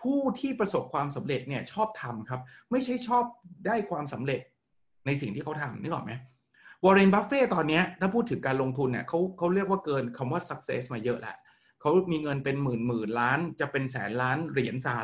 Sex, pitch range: male, 125-180 Hz